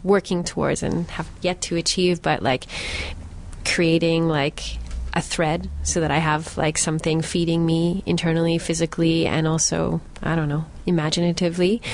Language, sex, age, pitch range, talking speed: English, female, 30-49, 165-190 Hz, 145 wpm